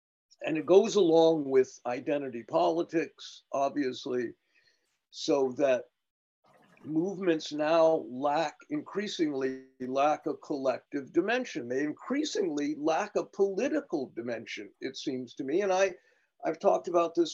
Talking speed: 120 wpm